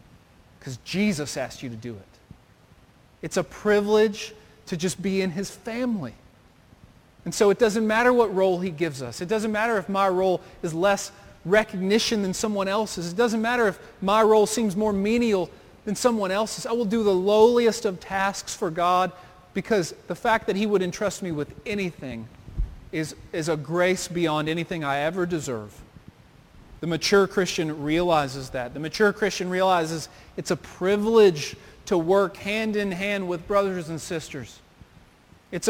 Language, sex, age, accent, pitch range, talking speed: English, male, 40-59, American, 165-210 Hz, 165 wpm